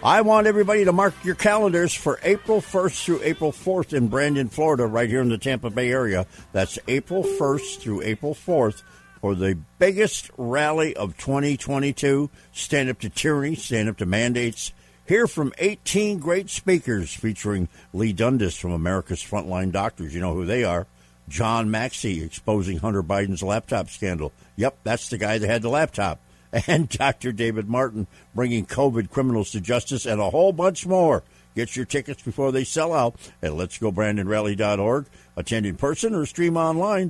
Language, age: English, 60-79